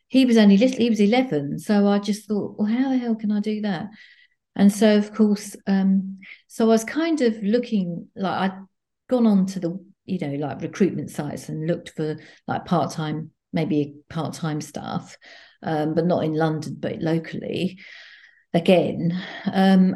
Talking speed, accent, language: 165 wpm, British, English